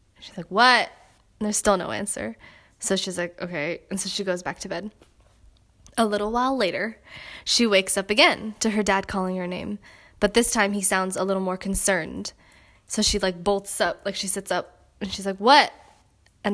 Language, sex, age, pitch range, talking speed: English, female, 10-29, 190-215 Hz, 205 wpm